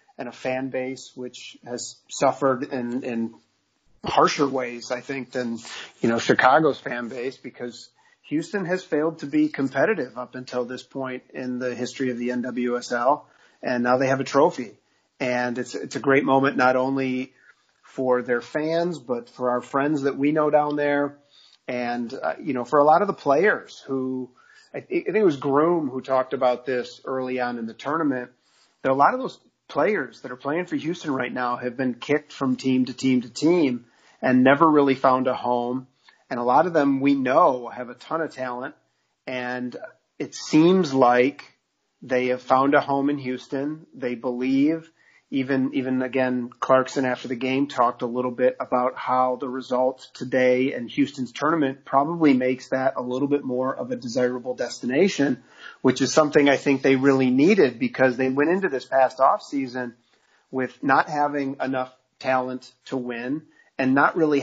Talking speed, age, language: 180 wpm, 40-59, English